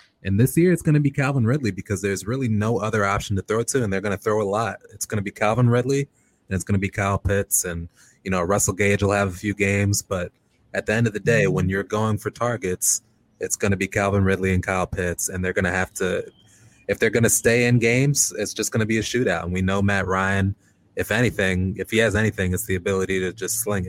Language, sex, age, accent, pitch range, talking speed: English, male, 20-39, American, 95-110 Hz, 265 wpm